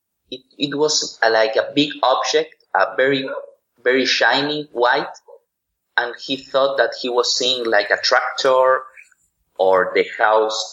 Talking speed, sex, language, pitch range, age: 140 wpm, male, English, 115-155 Hz, 30-49